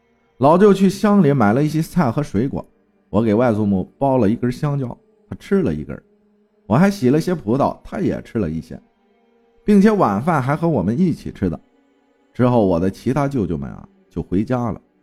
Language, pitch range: Chinese, 100-160 Hz